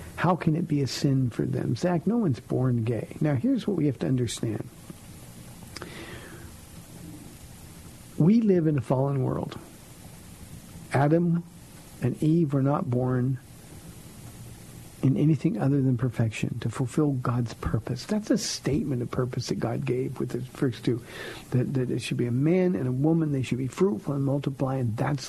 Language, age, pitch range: English, 50-69, 125-170 Hz